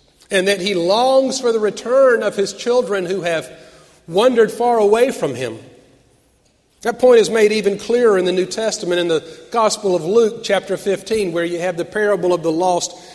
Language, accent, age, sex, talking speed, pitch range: English, American, 40-59, male, 190 wpm, 180-225 Hz